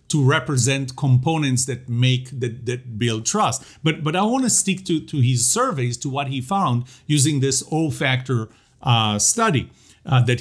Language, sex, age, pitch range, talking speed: English, male, 40-59, 120-170 Hz, 180 wpm